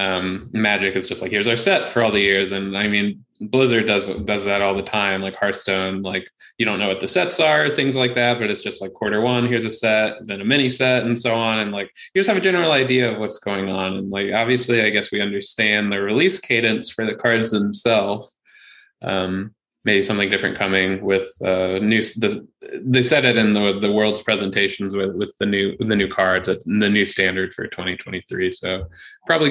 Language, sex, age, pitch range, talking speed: English, male, 20-39, 100-125 Hz, 225 wpm